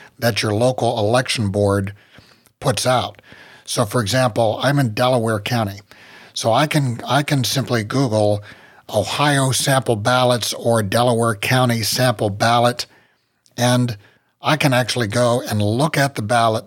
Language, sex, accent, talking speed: English, male, American, 135 wpm